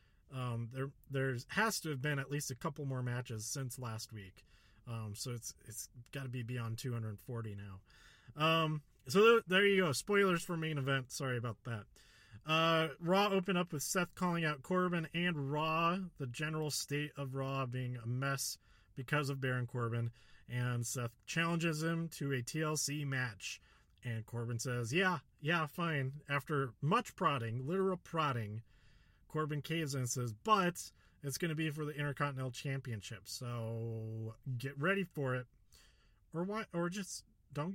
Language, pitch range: English, 120-165 Hz